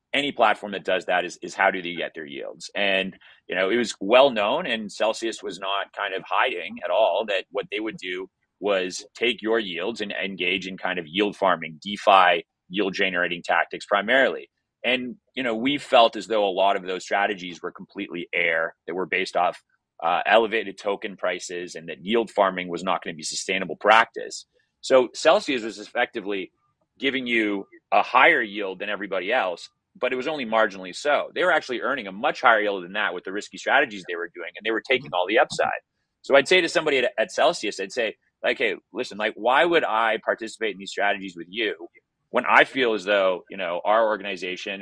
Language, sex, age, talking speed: English, male, 30-49, 210 wpm